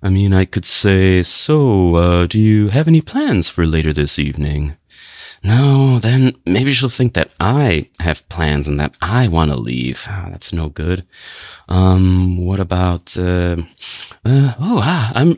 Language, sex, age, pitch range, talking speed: English, male, 30-49, 85-135 Hz, 170 wpm